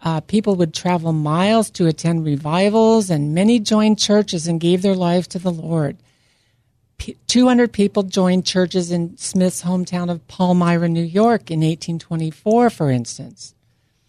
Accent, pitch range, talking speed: American, 155-195 Hz, 145 wpm